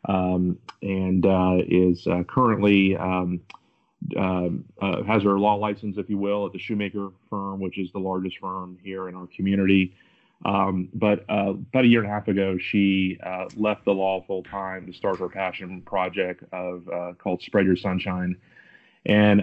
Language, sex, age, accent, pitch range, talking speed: English, male, 30-49, American, 90-100 Hz, 180 wpm